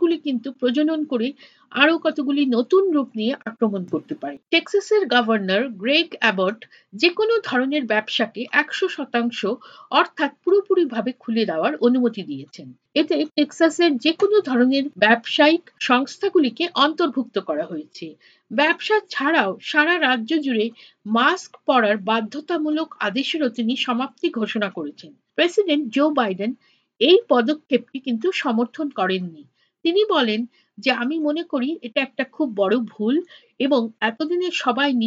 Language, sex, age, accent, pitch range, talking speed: Bengali, female, 50-69, native, 235-325 Hz, 30 wpm